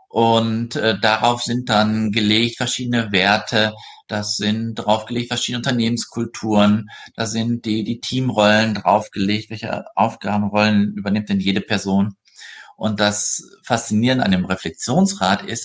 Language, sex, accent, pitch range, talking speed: German, male, German, 105-130 Hz, 125 wpm